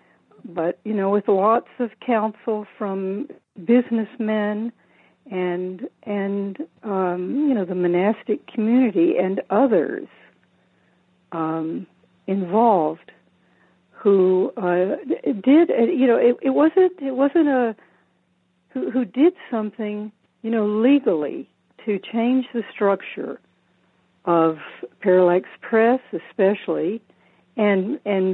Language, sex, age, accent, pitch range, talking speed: English, female, 60-79, American, 180-230 Hz, 105 wpm